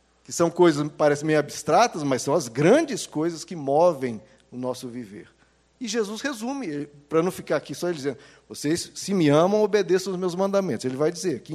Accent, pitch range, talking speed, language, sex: Brazilian, 135-185 Hz, 190 wpm, Portuguese, male